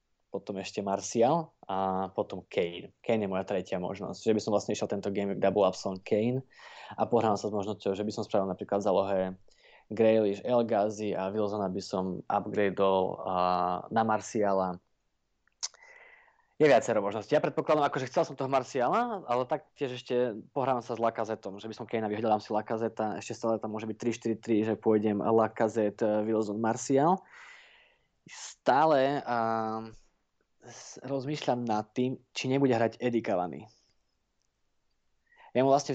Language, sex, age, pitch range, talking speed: Slovak, male, 20-39, 105-130 Hz, 150 wpm